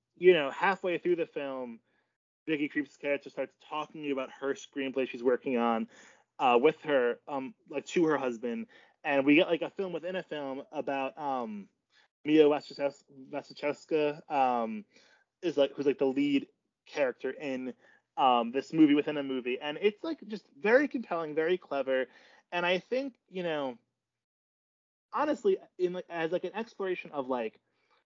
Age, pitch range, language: 20-39, 135-195 Hz, English